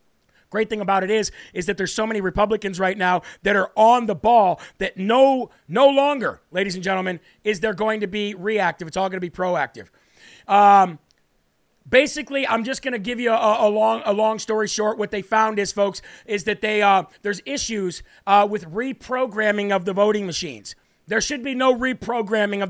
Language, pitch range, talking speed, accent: English, 195-235 Hz, 200 wpm, American